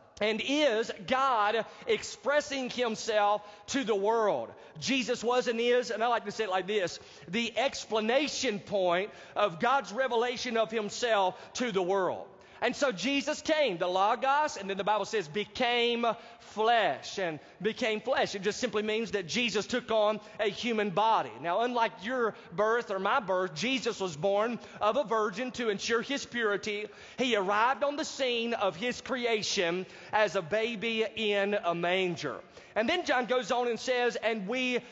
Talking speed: 170 wpm